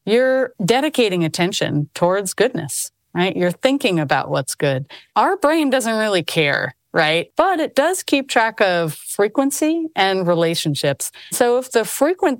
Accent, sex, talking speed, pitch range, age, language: American, female, 145 wpm, 165-235 Hz, 40-59, English